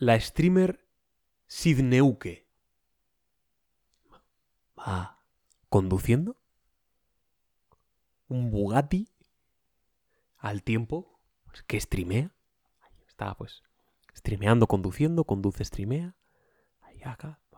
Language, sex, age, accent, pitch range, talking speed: Spanish, male, 30-49, Spanish, 100-140 Hz, 80 wpm